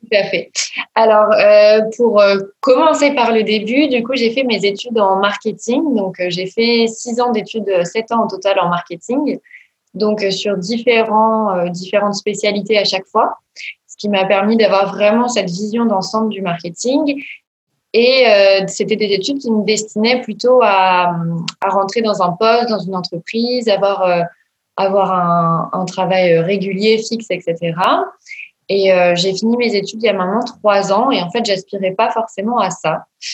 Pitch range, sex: 190-230 Hz, female